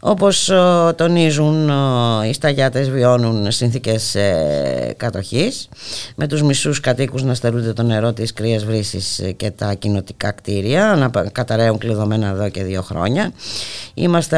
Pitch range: 100-140 Hz